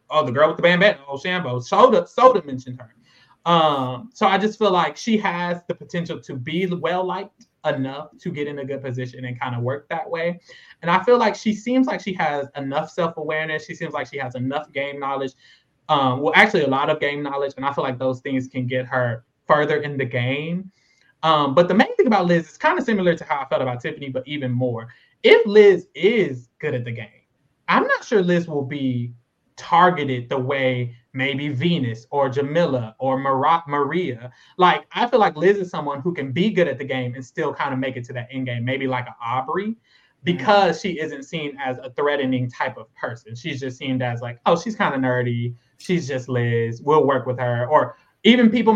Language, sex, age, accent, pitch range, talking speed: English, male, 20-39, American, 130-175 Hz, 220 wpm